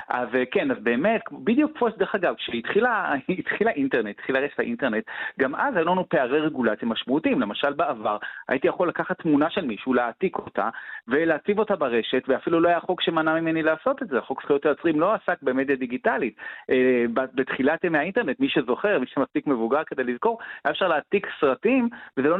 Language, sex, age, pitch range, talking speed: Hebrew, male, 40-59, 120-175 Hz, 175 wpm